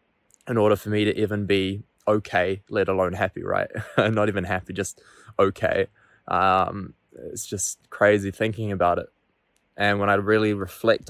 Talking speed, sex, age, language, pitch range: 155 wpm, male, 20-39, English, 90-100 Hz